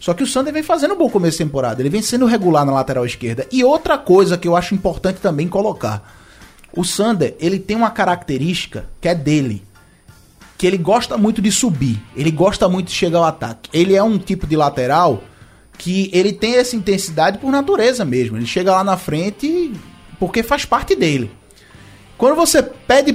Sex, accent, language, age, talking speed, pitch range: male, Brazilian, Portuguese, 20-39, 195 wpm, 165-225 Hz